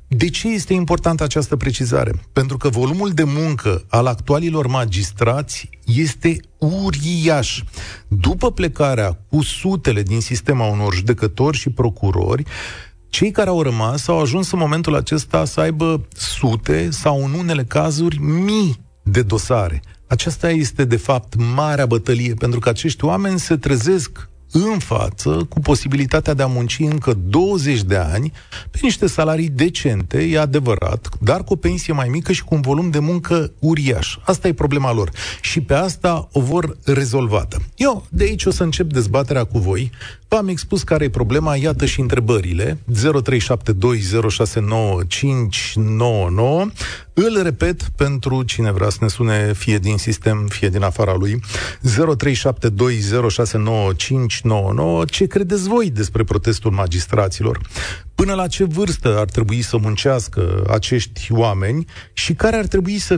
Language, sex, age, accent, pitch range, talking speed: Romanian, male, 40-59, native, 110-160 Hz, 145 wpm